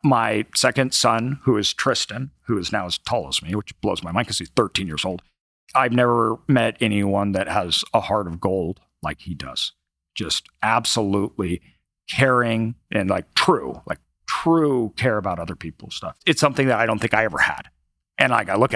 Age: 40-59